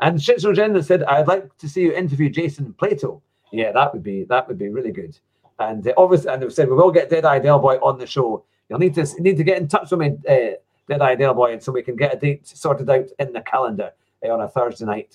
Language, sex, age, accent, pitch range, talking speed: English, male, 40-59, British, 130-180 Hz, 275 wpm